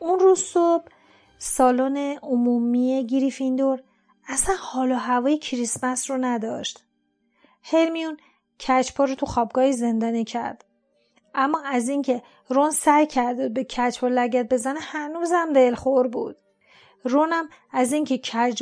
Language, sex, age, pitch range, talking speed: Persian, female, 40-59, 245-290 Hz, 120 wpm